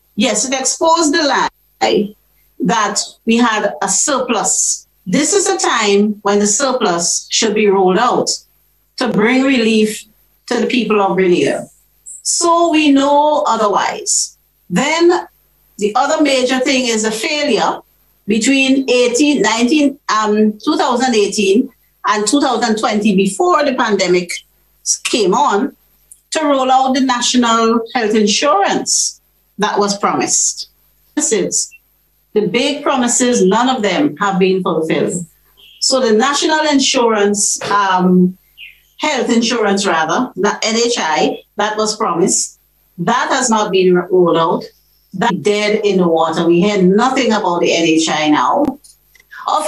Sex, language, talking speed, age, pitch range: female, English, 125 wpm, 50-69, 195-265 Hz